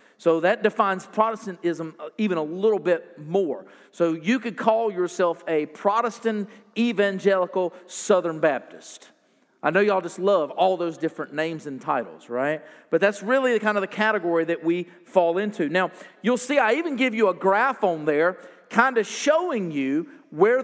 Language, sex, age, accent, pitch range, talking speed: English, male, 40-59, American, 185-235 Hz, 170 wpm